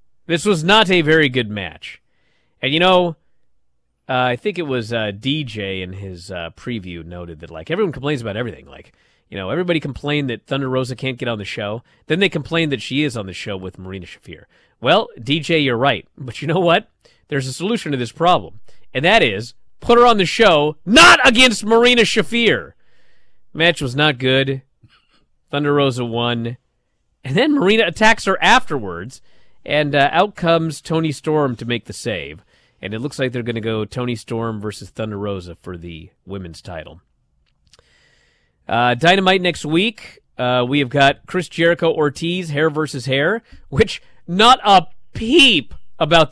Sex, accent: male, American